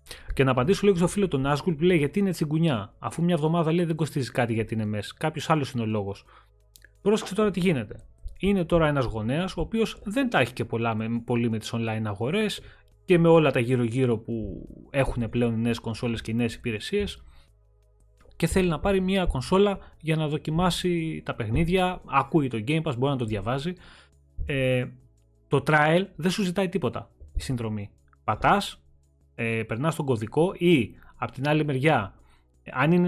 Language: Greek